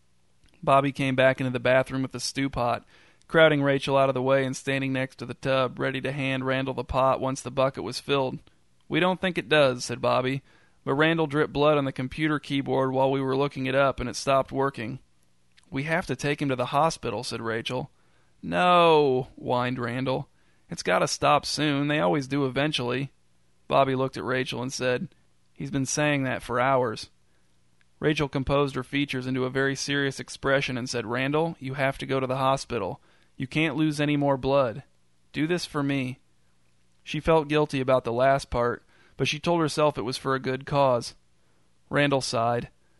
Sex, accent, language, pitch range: male, American, English, 120-145 Hz